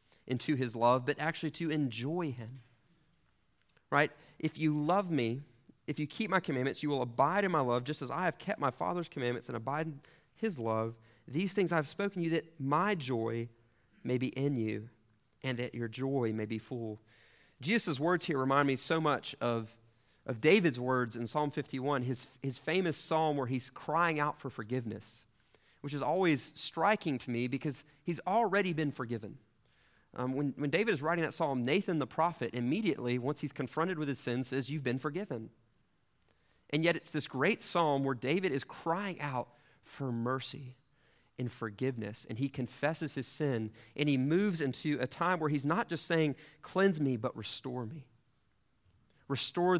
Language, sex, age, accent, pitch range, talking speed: English, male, 30-49, American, 120-155 Hz, 180 wpm